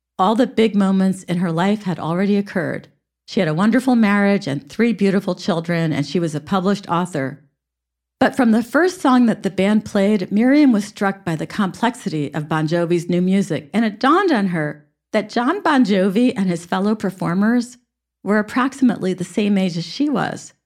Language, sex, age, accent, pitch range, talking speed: English, female, 50-69, American, 160-220 Hz, 190 wpm